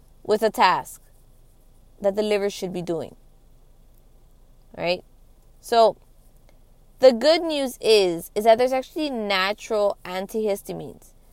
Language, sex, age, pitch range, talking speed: English, female, 20-39, 185-230 Hz, 110 wpm